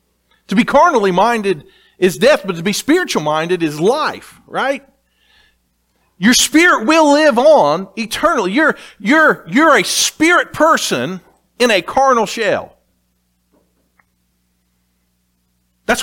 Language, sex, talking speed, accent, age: English, male, 115 wpm, American, 50-69